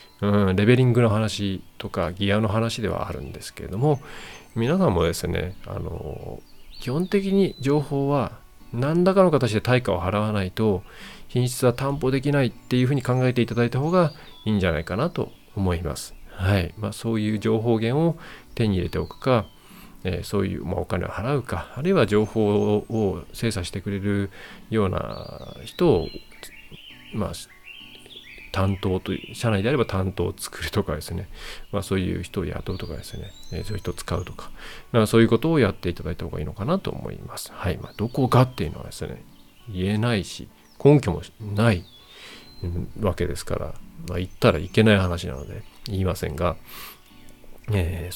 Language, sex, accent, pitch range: Japanese, male, native, 90-120 Hz